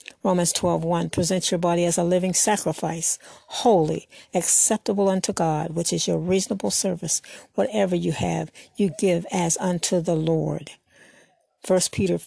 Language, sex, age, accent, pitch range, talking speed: English, female, 60-79, American, 175-210 Hz, 145 wpm